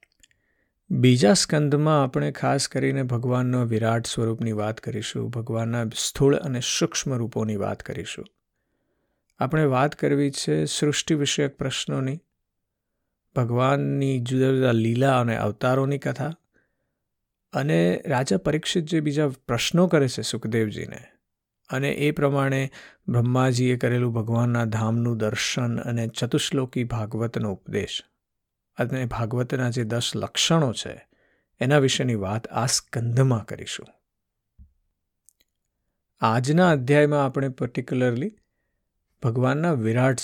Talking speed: 105 wpm